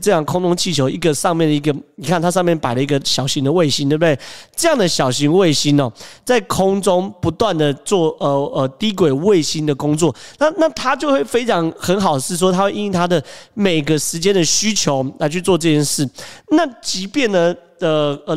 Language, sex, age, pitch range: Chinese, male, 30-49, 150-200 Hz